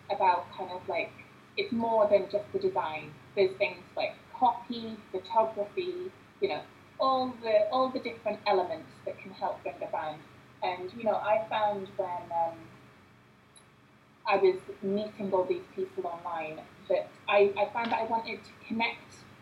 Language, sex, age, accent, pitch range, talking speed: English, female, 20-39, British, 190-235 Hz, 160 wpm